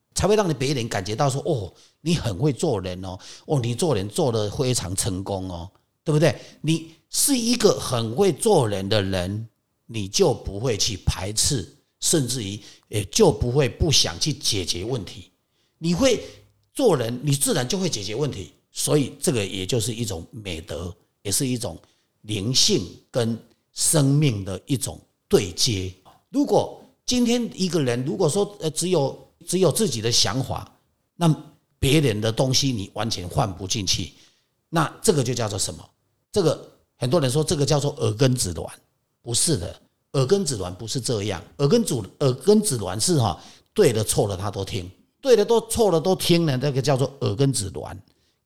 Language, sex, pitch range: Chinese, male, 105-155 Hz